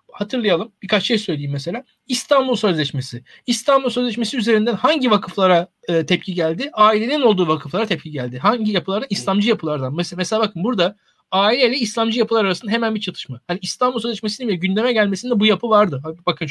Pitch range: 175-225 Hz